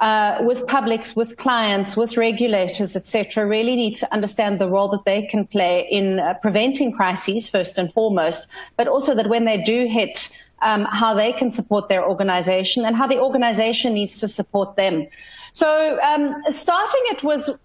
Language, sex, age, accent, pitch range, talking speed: English, female, 40-59, South African, 205-250 Hz, 180 wpm